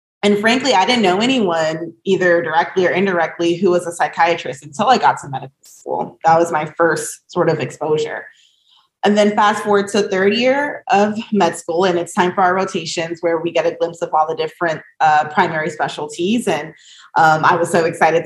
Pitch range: 165-195 Hz